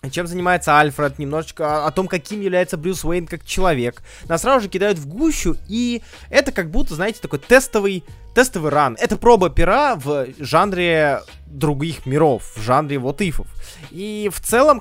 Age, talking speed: 20-39, 165 wpm